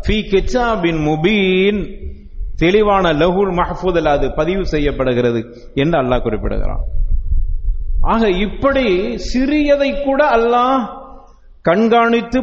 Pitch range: 145-230 Hz